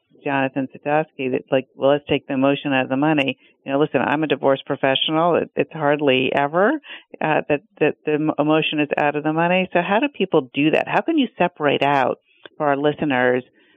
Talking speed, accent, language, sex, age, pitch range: 210 wpm, American, English, female, 50-69, 140-165 Hz